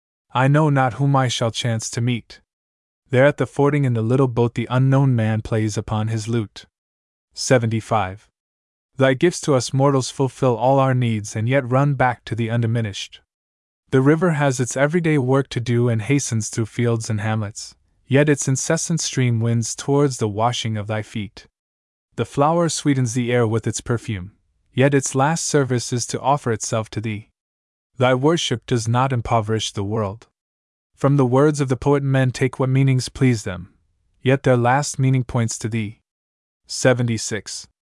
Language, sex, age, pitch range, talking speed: English, male, 20-39, 110-135 Hz, 175 wpm